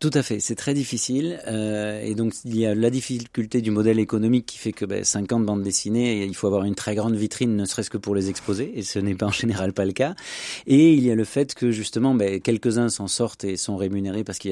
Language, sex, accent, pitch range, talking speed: French, male, French, 100-120 Hz, 265 wpm